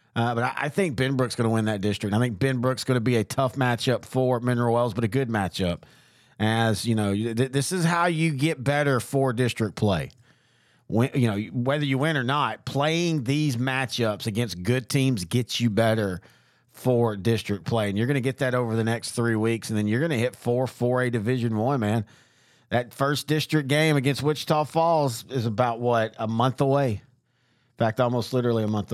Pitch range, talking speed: 115-145 Hz, 205 wpm